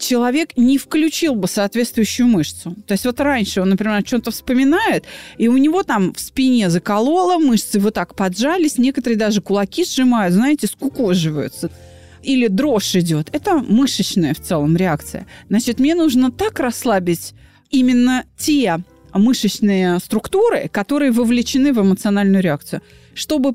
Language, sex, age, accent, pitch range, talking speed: Russian, female, 30-49, native, 185-265 Hz, 140 wpm